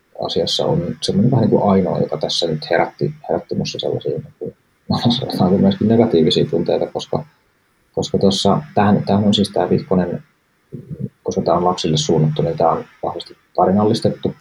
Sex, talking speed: male, 115 wpm